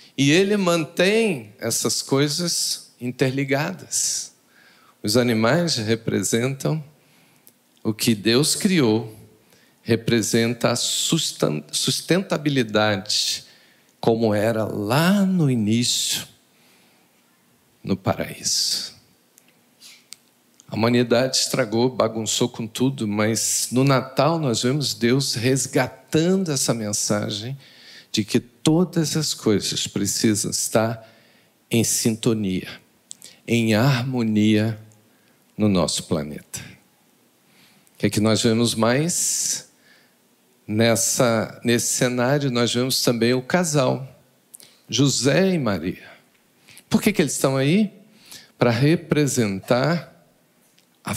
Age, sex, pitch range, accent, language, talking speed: 50-69, male, 110-150 Hz, Brazilian, Portuguese, 95 wpm